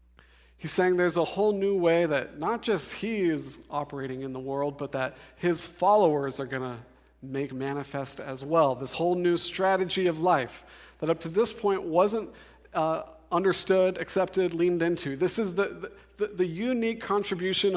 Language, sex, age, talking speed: English, male, 40-59, 170 wpm